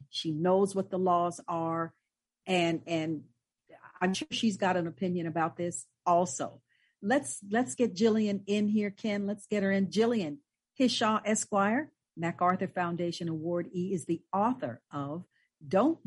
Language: English